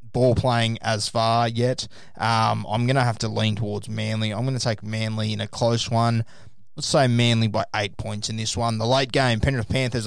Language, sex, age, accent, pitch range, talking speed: English, male, 20-39, Australian, 110-120 Hz, 220 wpm